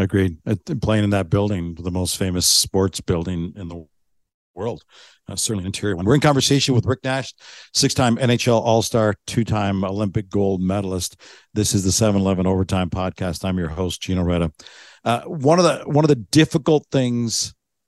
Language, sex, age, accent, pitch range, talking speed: English, male, 50-69, American, 95-115 Hz, 170 wpm